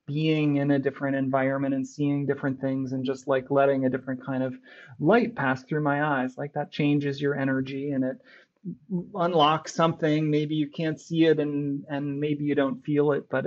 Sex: male